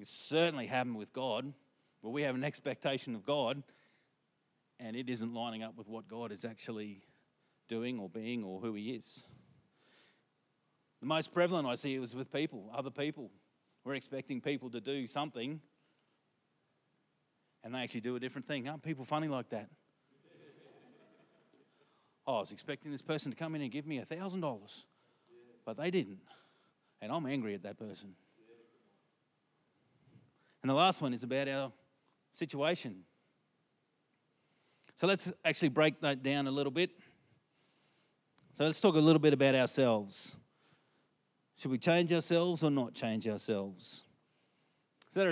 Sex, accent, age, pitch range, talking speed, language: male, Australian, 30-49, 120-150 Hz, 150 wpm, English